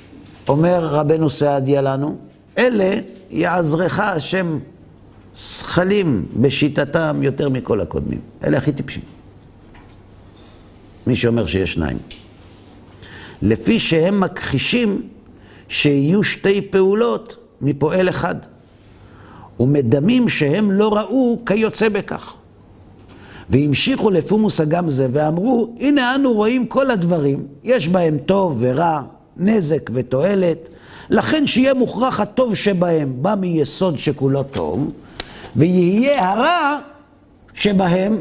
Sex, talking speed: male, 95 wpm